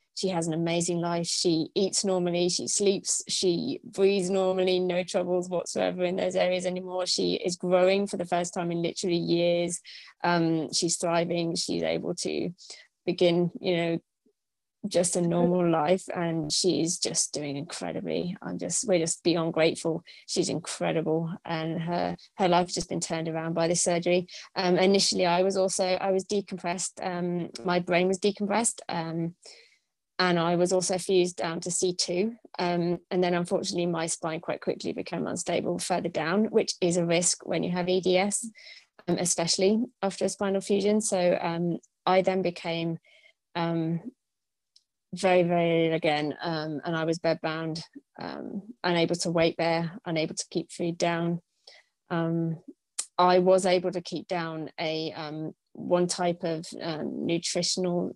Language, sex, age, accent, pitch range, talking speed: English, female, 20-39, British, 170-185 Hz, 160 wpm